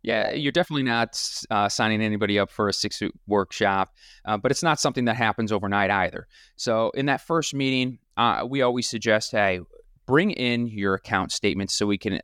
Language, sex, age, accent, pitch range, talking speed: English, male, 30-49, American, 100-120 Hz, 195 wpm